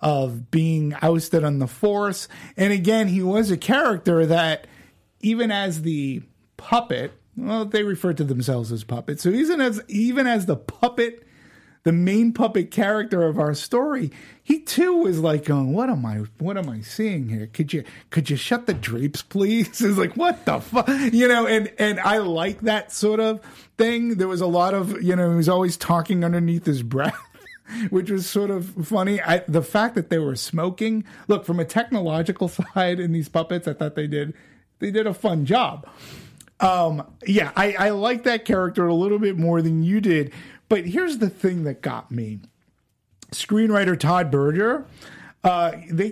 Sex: male